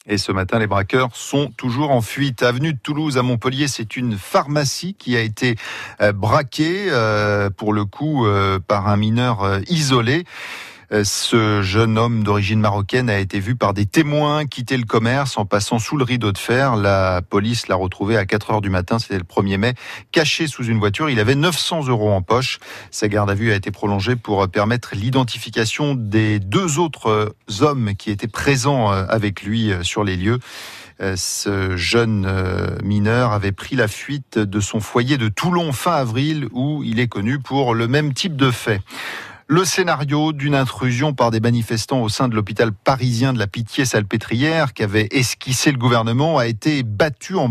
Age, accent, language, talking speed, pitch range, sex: 40-59, French, French, 175 wpm, 105-135 Hz, male